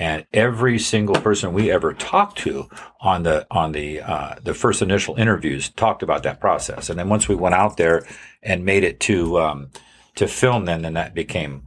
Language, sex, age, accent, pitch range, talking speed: English, male, 50-69, American, 90-115 Hz, 200 wpm